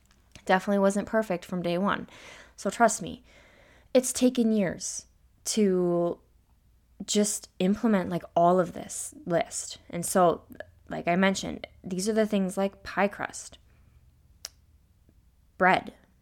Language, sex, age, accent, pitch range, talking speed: English, female, 20-39, American, 160-225 Hz, 120 wpm